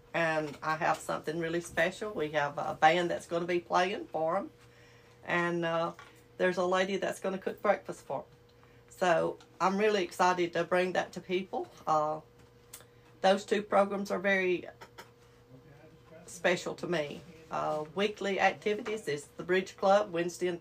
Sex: female